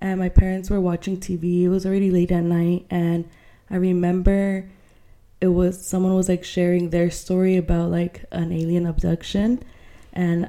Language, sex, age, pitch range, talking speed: English, female, 20-39, 170-190 Hz, 165 wpm